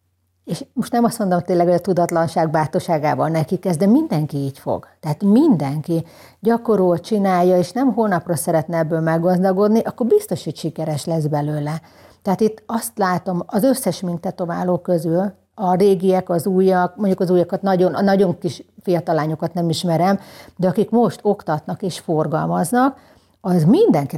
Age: 50-69